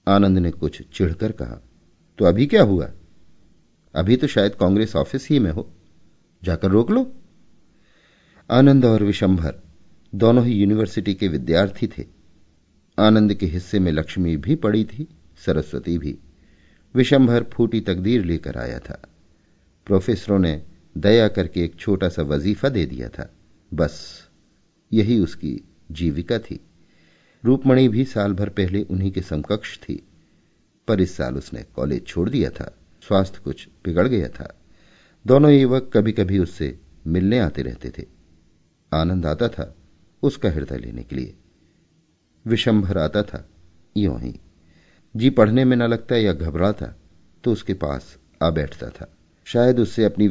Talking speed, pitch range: 145 wpm, 80-110 Hz